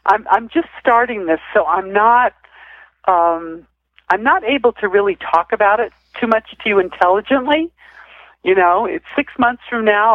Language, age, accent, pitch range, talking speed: English, 60-79, American, 180-245 Hz, 170 wpm